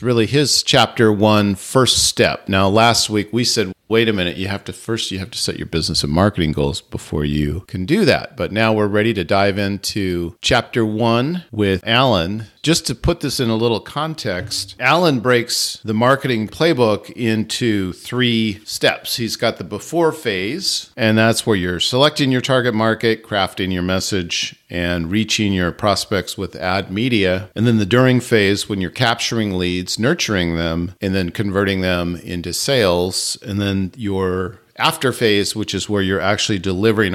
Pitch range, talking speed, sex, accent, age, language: 95-115 Hz, 180 wpm, male, American, 50-69, English